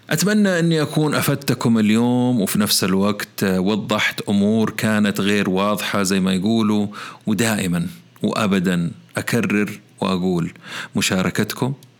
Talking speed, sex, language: 105 wpm, male, Arabic